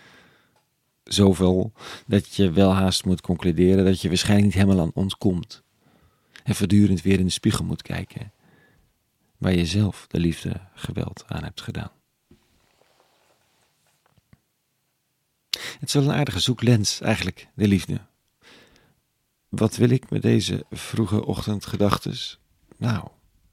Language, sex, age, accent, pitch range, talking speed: Dutch, male, 40-59, Dutch, 95-110 Hz, 130 wpm